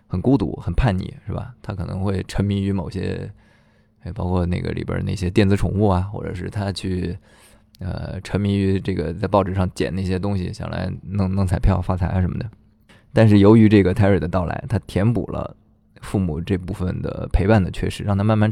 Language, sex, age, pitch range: Chinese, male, 20-39, 95-110 Hz